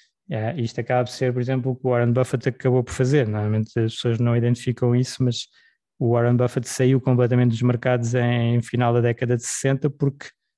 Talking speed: 210 wpm